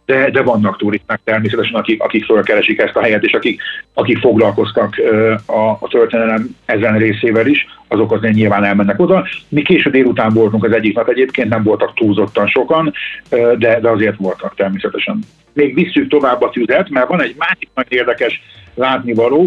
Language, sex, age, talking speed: Hungarian, male, 50-69, 170 wpm